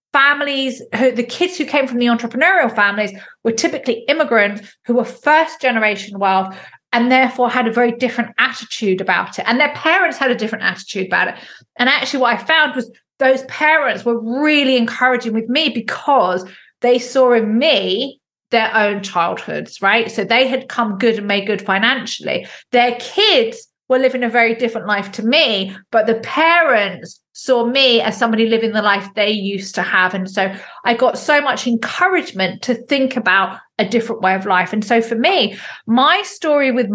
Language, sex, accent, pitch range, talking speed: English, female, British, 205-260 Hz, 185 wpm